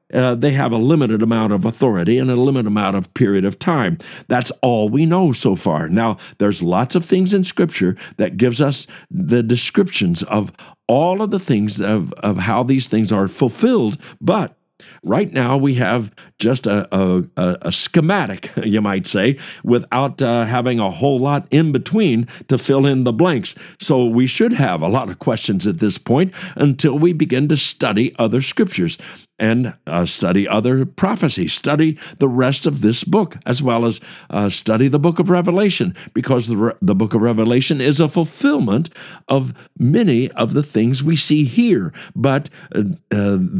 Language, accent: English, American